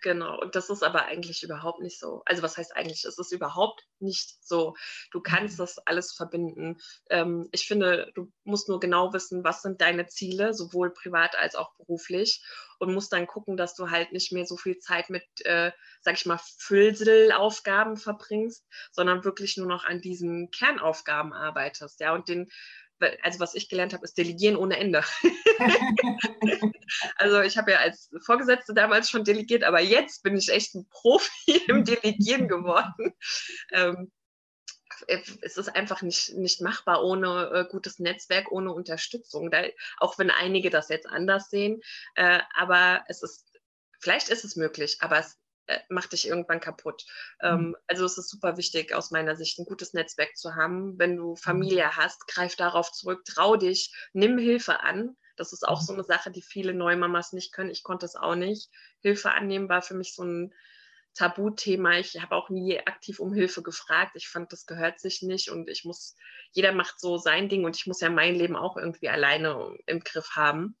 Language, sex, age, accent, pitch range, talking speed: German, female, 20-39, German, 170-200 Hz, 180 wpm